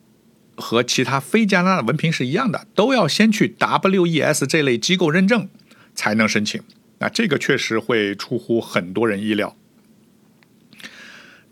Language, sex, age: Chinese, male, 60-79